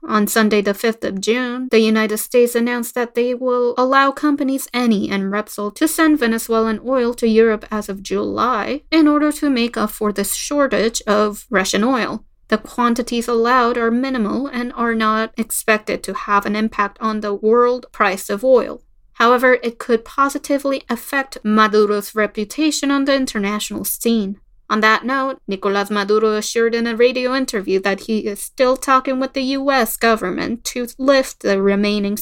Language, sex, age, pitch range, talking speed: English, female, 20-39, 215-260 Hz, 170 wpm